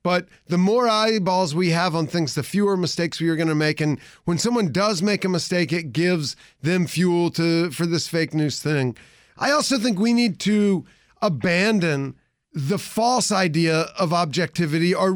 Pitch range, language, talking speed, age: 160-210 Hz, English, 180 wpm, 40-59